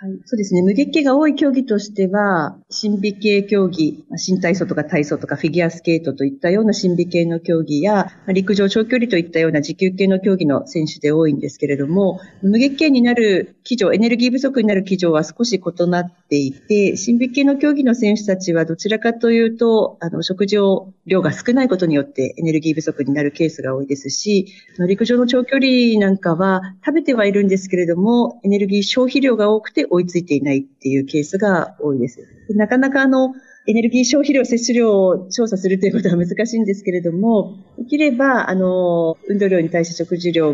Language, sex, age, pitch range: Japanese, female, 50-69, 170-230 Hz